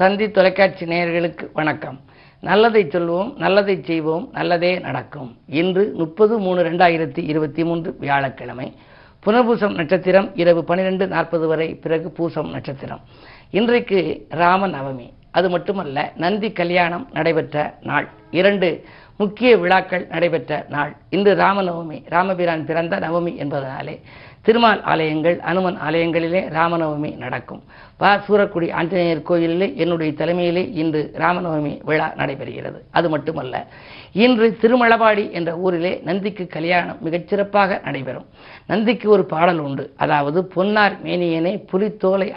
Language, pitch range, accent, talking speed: Tamil, 165-200 Hz, native, 115 wpm